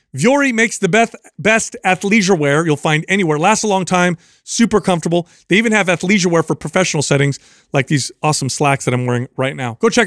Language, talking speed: English, 210 wpm